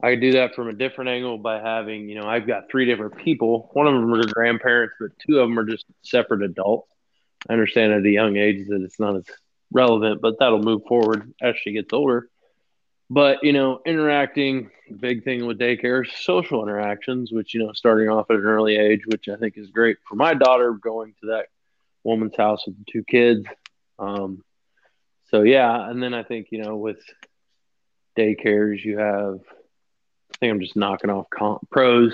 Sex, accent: male, American